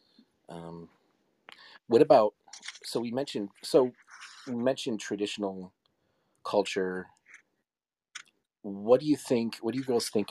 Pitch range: 90-115 Hz